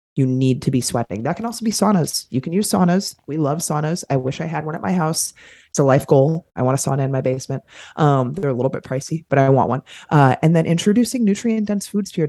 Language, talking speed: English, 270 wpm